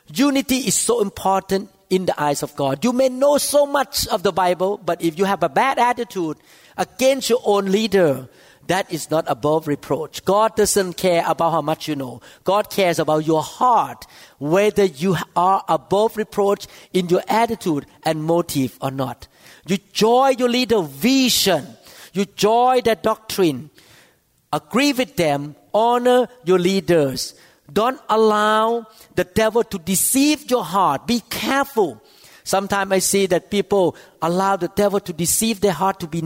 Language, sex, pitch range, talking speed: English, male, 165-220 Hz, 160 wpm